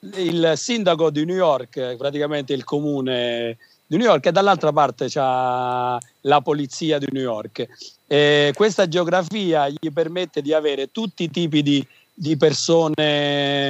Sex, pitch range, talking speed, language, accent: male, 130-155 Hz, 140 wpm, Italian, native